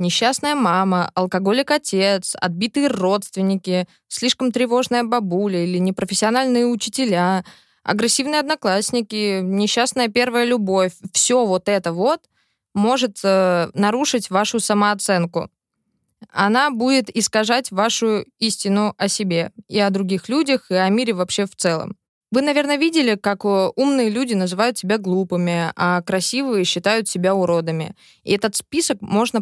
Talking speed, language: 120 wpm, Russian